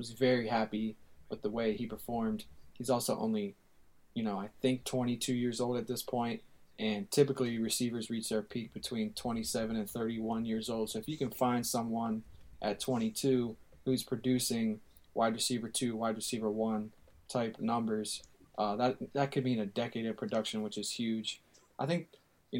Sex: male